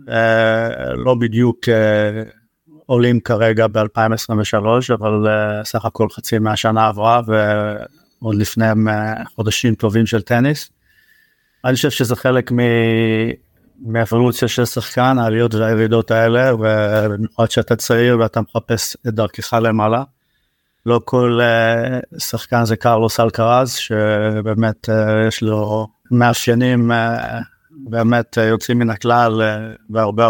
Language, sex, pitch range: Hebrew, male, 110-120 Hz